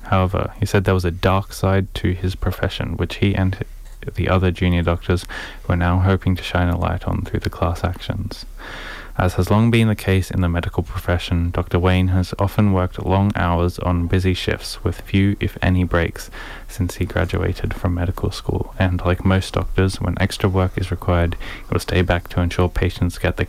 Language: English